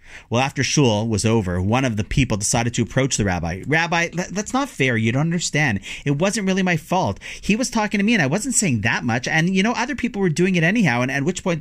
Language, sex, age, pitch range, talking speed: English, male, 40-59, 105-160 Hz, 260 wpm